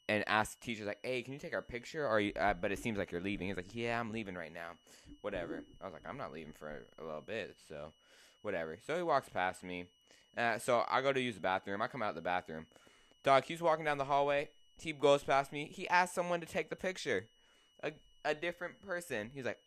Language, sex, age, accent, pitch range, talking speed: English, male, 20-39, American, 90-130 Hz, 245 wpm